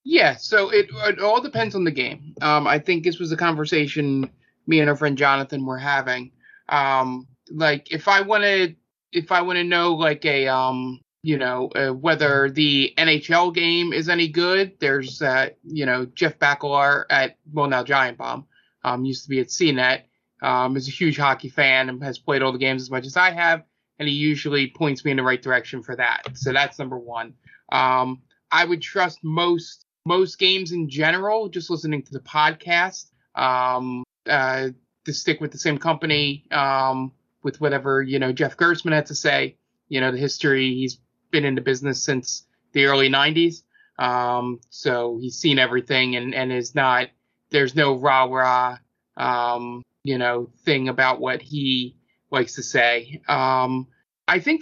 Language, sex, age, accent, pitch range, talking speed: English, male, 20-39, American, 130-160 Hz, 175 wpm